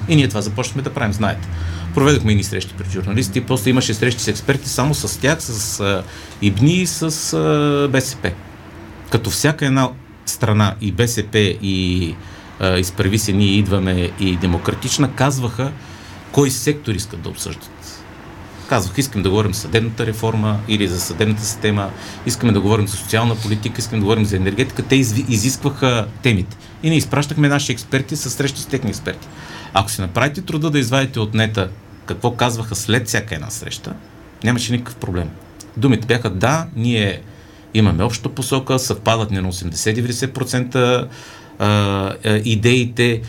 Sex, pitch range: male, 100-130 Hz